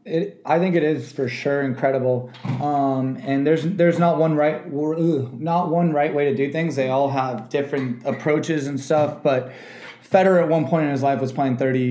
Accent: American